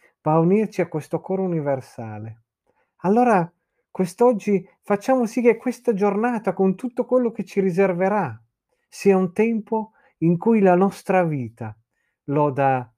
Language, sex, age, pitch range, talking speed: Italian, male, 40-59, 130-190 Hz, 135 wpm